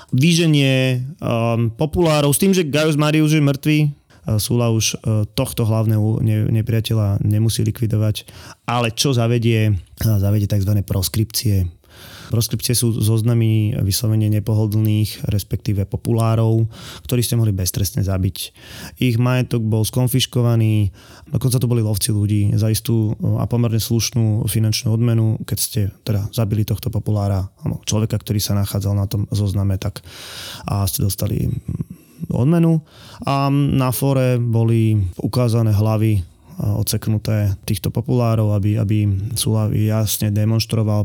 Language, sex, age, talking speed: Slovak, male, 20-39, 125 wpm